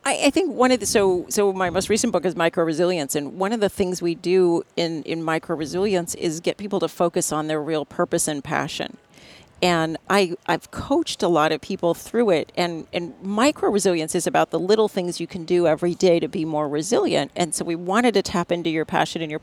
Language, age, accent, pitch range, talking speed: English, 40-59, American, 165-200 Hz, 230 wpm